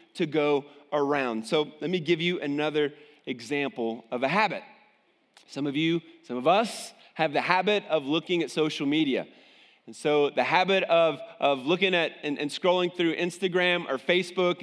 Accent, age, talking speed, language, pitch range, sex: American, 30-49, 170 wpm, English, 145-190 Hz, male